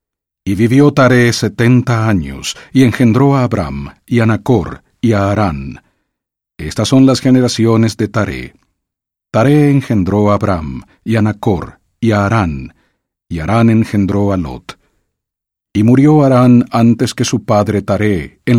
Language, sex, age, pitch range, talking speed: English, male, 50-69, 95-125 Hz, 150 wpm